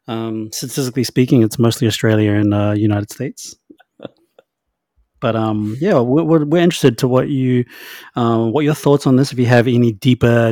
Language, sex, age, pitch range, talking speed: English, male, 30-49, 115-155 Hz, 170 wpm